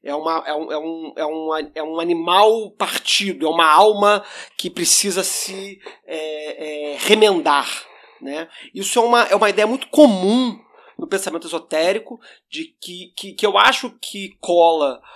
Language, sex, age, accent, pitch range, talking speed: English, male, 40-59, Brazilian, 170-255 Hz, 160 wpm